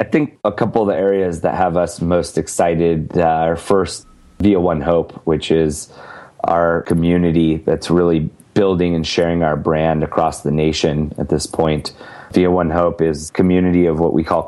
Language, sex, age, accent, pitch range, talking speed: English, male, 30-49, American, 80-90 Hz, 180 wpm